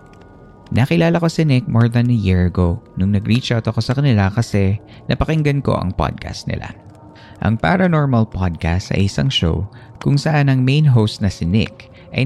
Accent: native